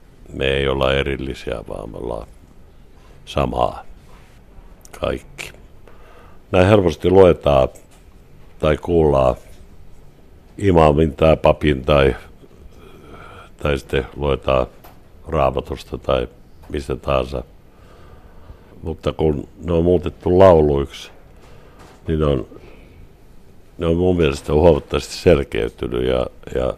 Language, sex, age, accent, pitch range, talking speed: Finnish, male, 60-79, native, 65-85 Hz, 90 wpm